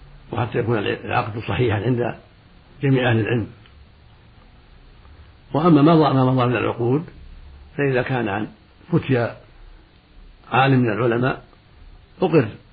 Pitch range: 100-130 Hz